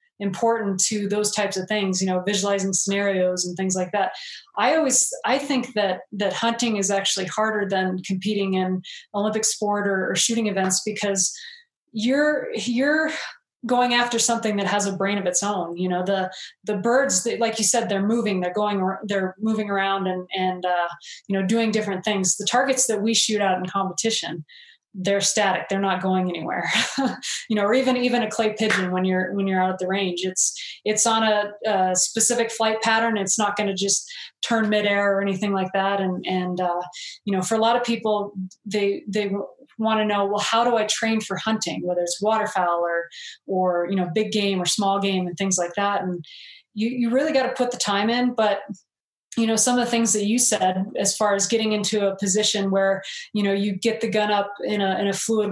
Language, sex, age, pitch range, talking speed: English, female, 20-39, 190-225 Hz, 215 wpm